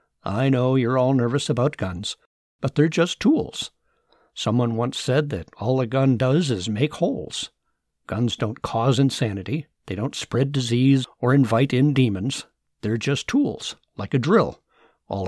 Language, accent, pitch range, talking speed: English, American, 115-140 Hz, 160 wpm